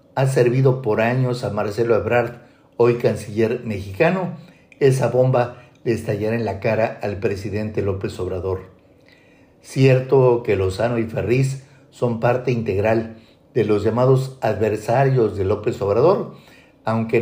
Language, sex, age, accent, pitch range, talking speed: Spanish, male, 50-69, Mexican, 110-135 Hz, 130 wpm